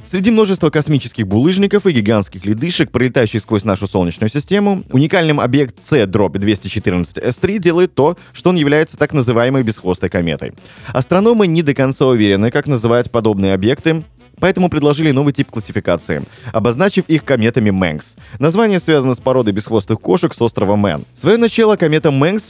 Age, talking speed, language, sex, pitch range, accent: 20-39, 145 wpm, Russian, male, 105-155 Hz, native